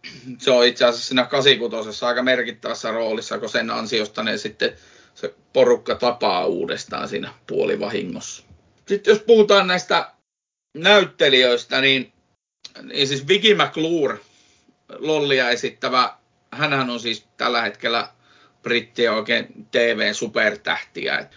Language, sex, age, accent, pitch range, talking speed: Finnish, male, 30-49, native, 120-155 Hz, 110 wpm